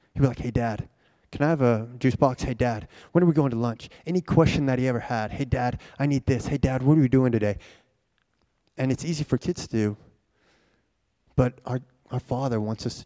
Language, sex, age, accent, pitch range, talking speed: English, male, 20-39, American, 110-140 Hz, 235 wpm